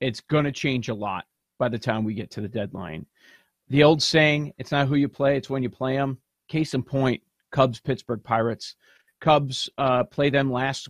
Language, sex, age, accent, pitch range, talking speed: English, male, 40-59, American, 125-160 Hz, 210 wpm